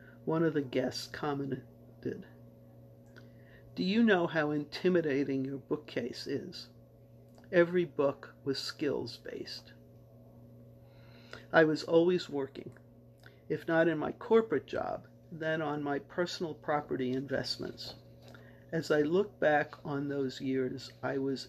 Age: 50-69